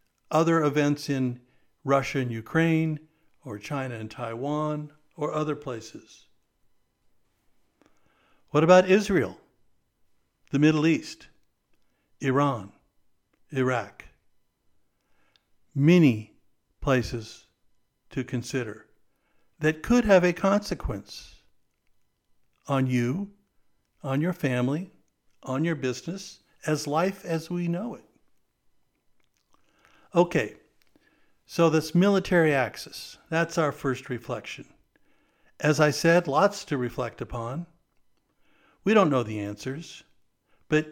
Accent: American